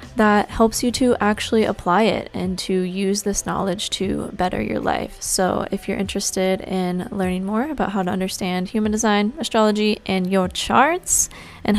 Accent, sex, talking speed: American, female, 175 wpm